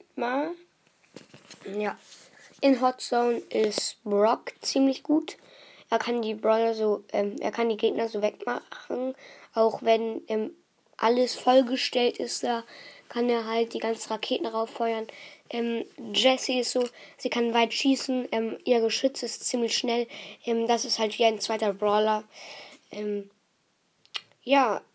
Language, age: German, 20-39